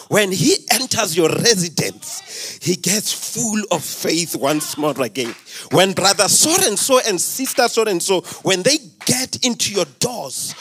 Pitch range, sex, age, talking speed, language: 175-255 Hz, male, 30-49, 165 wpm, English